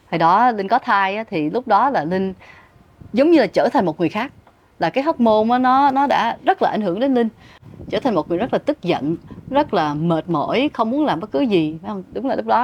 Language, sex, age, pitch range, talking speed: Vietnamese, female, 20-39, 185-260 Hz, 250 wpm